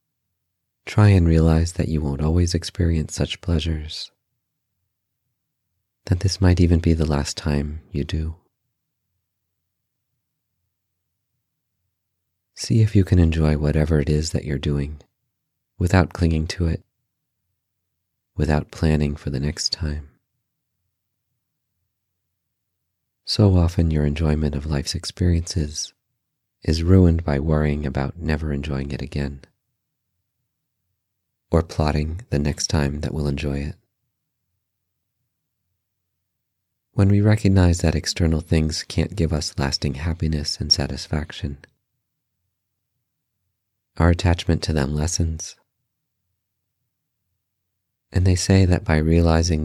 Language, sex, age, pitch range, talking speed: English, male, 40-59, 75-100 Hz, 110 wpm